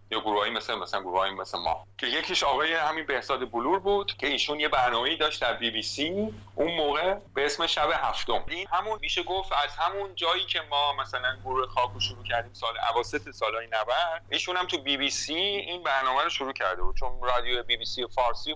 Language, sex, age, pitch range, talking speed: Persian, male, 40-59, 125-175 Hz, 205 wpm